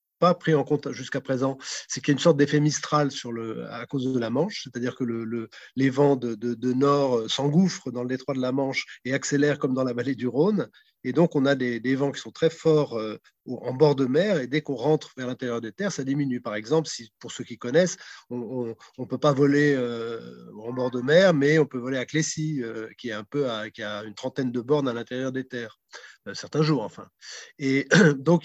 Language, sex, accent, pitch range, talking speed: French, male, French, 125-155 Hz, 225 wpm